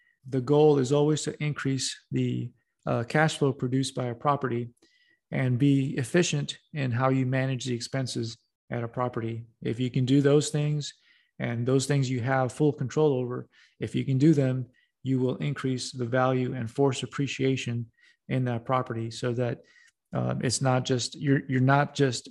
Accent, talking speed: American, 180 wpm